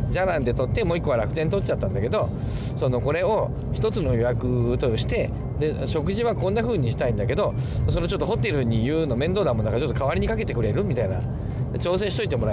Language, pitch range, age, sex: Japanese, 120-140 Hz, 40-59, male